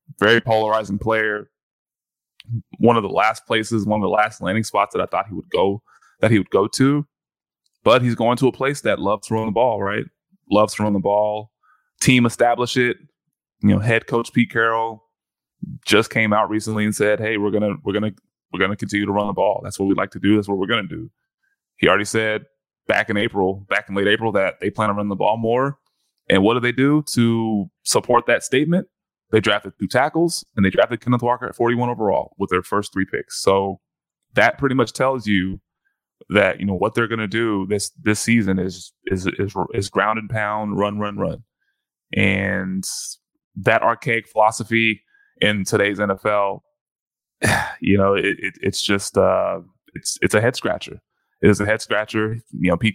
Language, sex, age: English, male, 20-39